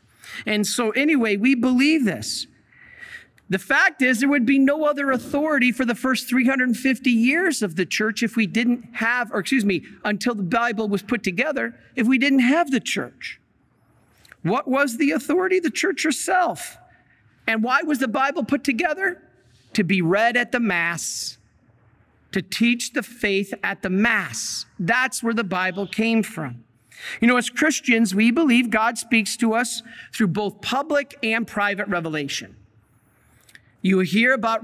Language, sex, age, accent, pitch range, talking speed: English, male, 50-69, American, 185-260 Hz, 165 wpm